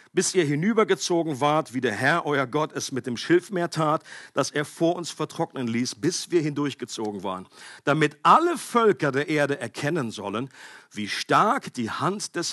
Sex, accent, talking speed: male, German, 170 wpm